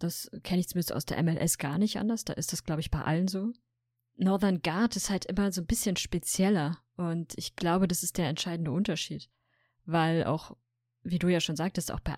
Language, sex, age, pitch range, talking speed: German, female, 20-39, 150-180 Hz, 215 wpm